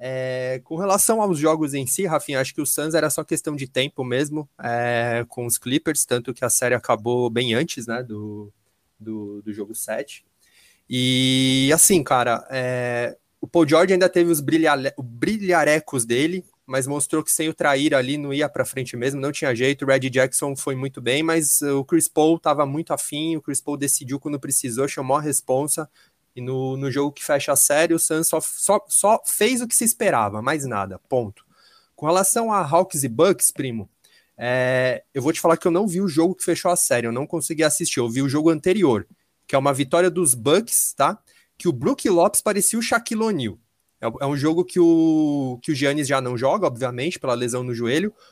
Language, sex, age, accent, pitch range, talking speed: Portuguese, male, 20-39, Brazilian, 125-165 Hz, 210 wpm